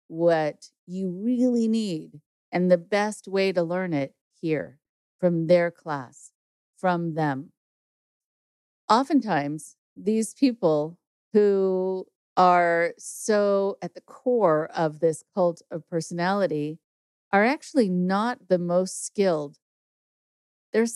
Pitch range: 165-195 Hz